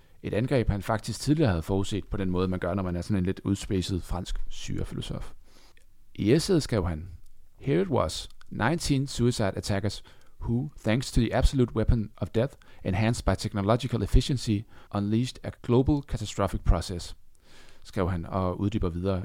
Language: Danish